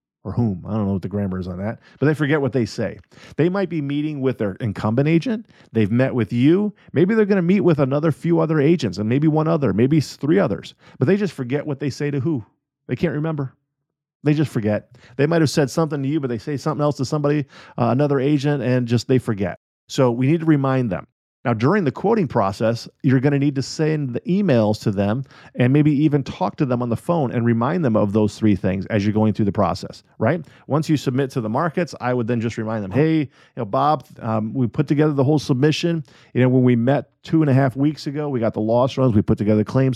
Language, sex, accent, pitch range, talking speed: English, male, American, 115-150 Hz, 250 wpm